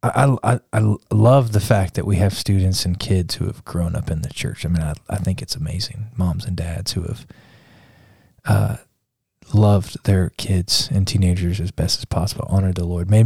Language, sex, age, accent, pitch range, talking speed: English, male, 20-39, American, 95-115 Hz, 205 wpm